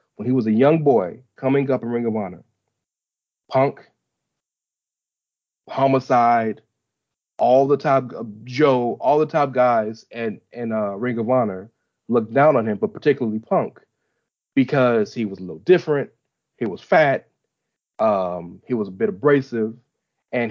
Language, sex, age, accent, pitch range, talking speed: English, male, 30-49, American, 115-140 Hz, 155 wpm